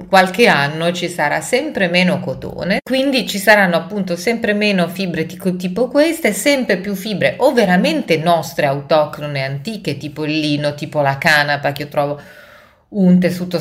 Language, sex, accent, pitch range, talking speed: Italian, female, native, 140-185 Hz, 160 wpm